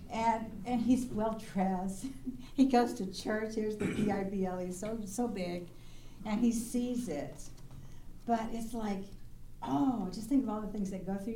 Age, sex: 60-79, female